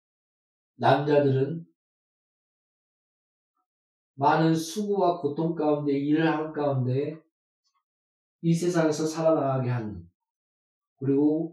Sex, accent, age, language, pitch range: male, native, 40-59, Korean, 125-175 Hz